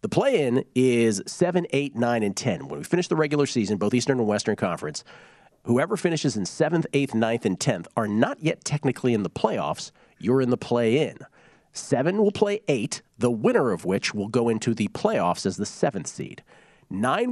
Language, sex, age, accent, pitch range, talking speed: English, male, 40-59, American, 115-145 Hz, 195 wpm